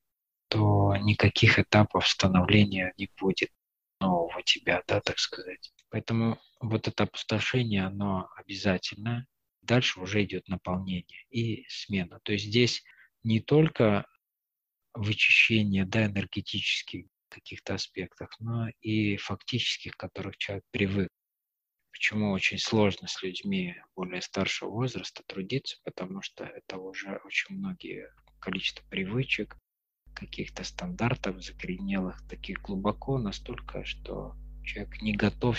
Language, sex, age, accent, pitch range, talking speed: Russian, male, 20-39, native, 95-115 Hz, 110 wpm